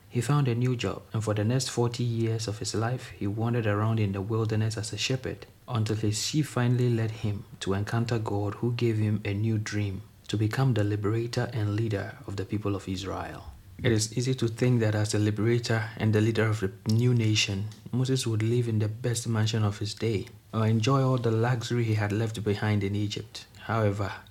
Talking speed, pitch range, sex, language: 215 wpm, 105-120 Hz, male, English